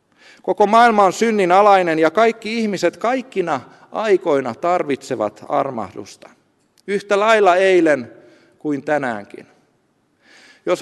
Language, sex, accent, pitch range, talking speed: Finnish, male, native, 150-210 Hz, 100 wpm